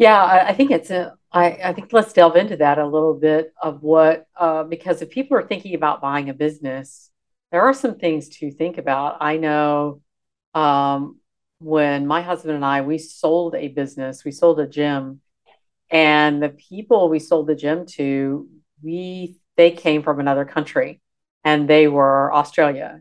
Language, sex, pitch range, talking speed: English, female, 145-165 Hz, 175 wpm